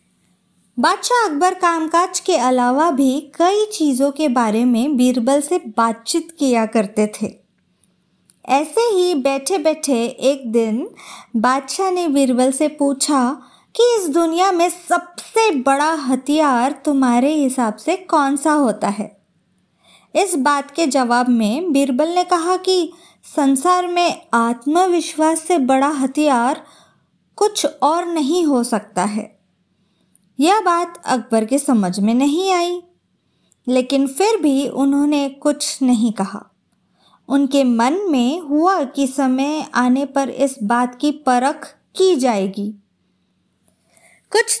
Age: 20-39